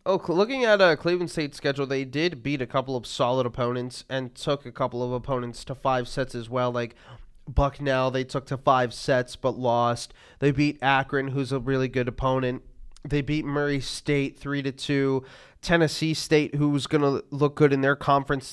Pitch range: 135-155 Hz